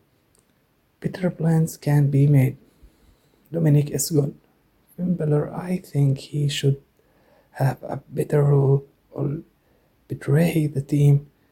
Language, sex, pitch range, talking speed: English, male, 140-160 Hz, 110 wpm